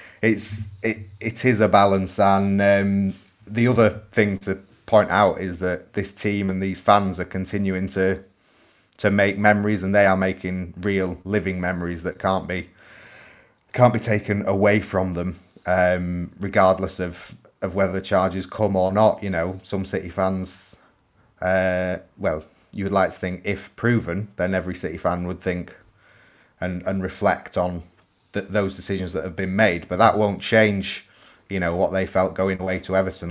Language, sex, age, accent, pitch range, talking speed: English, male, 30-49, British, 90-100 Hz, 175 wpm